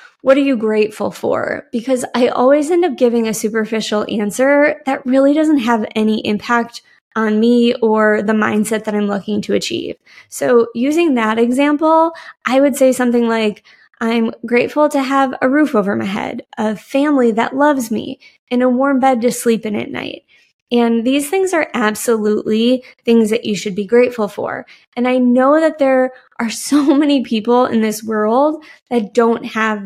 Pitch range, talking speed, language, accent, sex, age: 220-275 Hz, 180 wpm, English, American, female, 20-39